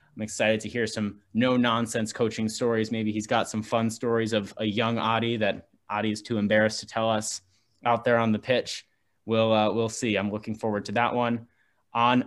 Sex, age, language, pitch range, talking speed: male, 20-39, English, 105-125 Hz, 205 wpm